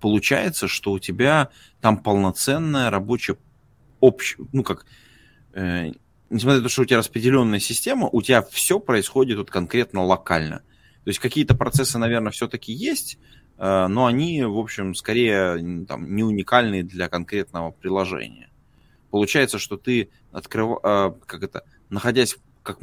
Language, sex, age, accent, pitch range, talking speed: Russian, male, 20-39, native, 95-125 Hz, 135 wpm